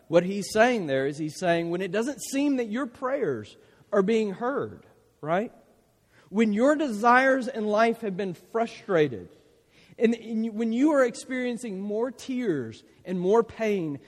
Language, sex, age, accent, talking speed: English, male, 40-59, American, 155 wpm